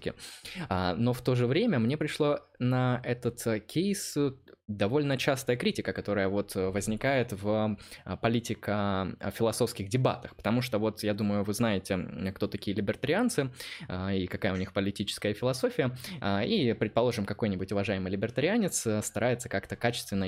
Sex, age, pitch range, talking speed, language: male, 20-39, 100-125 Hz, 125 wpm, Russian